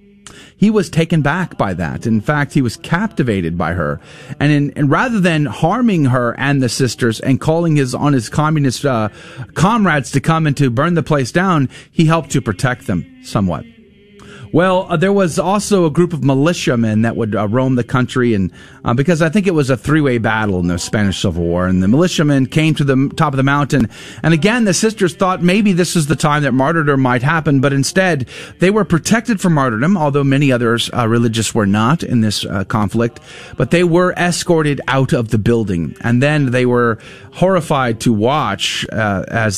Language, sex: English, male